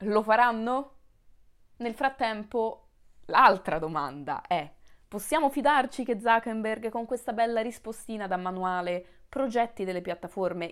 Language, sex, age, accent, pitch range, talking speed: Italian, female, 20-39, native, 165-215 Hz, 110 wpm